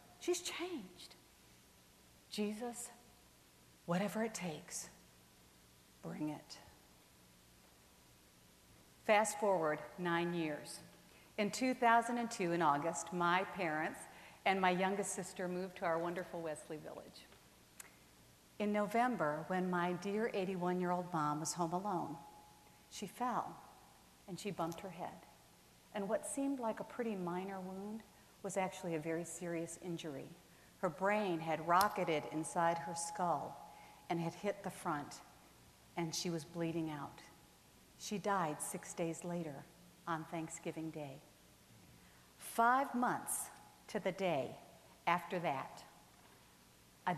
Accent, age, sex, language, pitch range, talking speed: American, 50-69, female, English, 150-195 Hz, 115 wpm